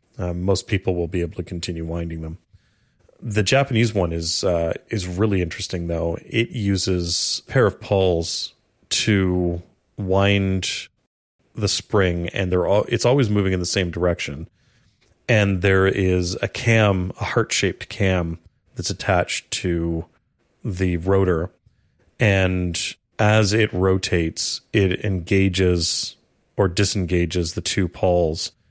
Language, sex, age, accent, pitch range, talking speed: English, male, 30-49, American, 90-105 Hz, 130 wpm